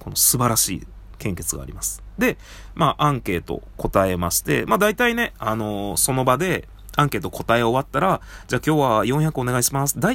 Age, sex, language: 20-39, male, Japanese